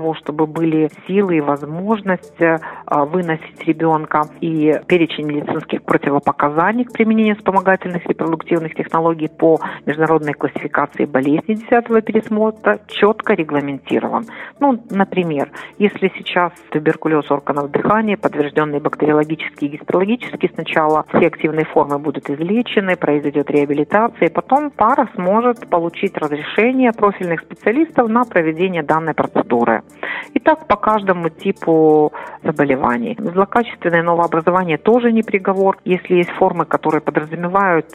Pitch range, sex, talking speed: 155-205 Hz, female, 115 wpm